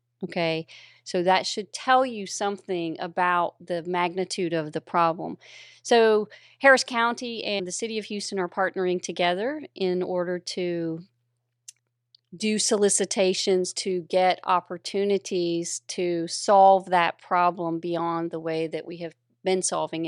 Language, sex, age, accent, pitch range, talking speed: English, female, 40-59, American, 170-190 Hz, 130 wpm